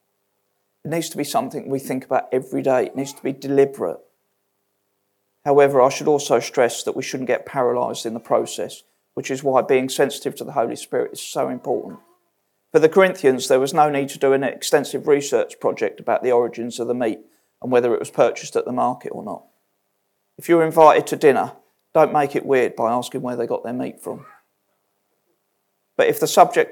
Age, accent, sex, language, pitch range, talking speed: 40-59, British, male, English, 115-160 Hz, 200 wpm